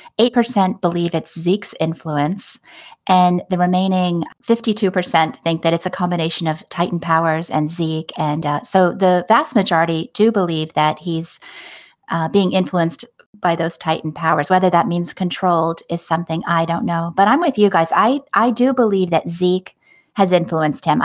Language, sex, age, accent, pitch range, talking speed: English, female, 30-49, American, 165-205 Hz, 170 wpm